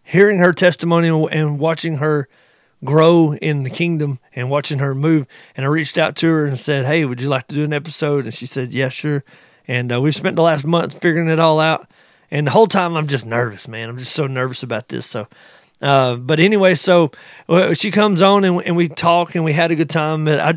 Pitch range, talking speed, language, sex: 140-170 Hz, 230 wpm, English, male